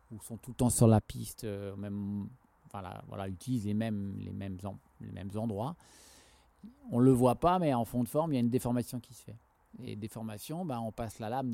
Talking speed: 235 wpm